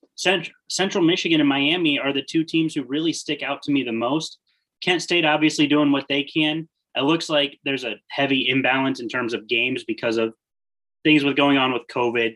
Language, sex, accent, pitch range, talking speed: English, male, American, 115-155 Hz, 210 wpm